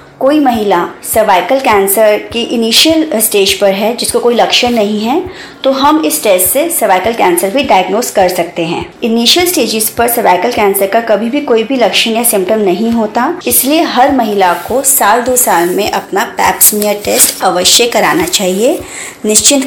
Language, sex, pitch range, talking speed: Hindi, male, 195-260 Hz, 170 wpm